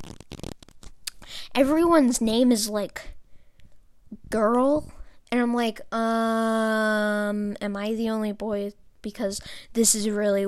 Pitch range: 220-295 Hz